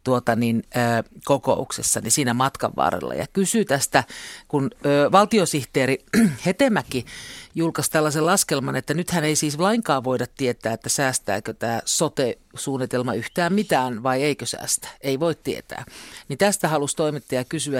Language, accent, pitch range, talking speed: Finnish, native, 135-220 Hz, 140 wpm